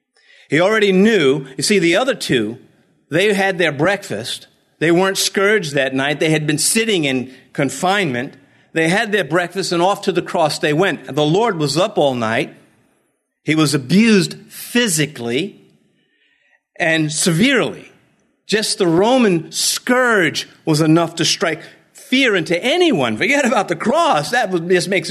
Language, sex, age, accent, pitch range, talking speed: English, male, 50-69, American, 135-205 Hz, 155 wpm